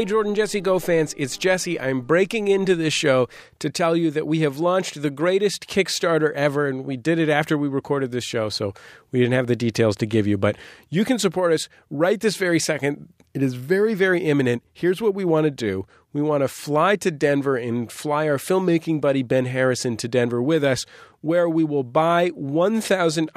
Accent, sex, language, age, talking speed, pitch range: American, male, English, 40-59, 215 wpm, 120-160 Hz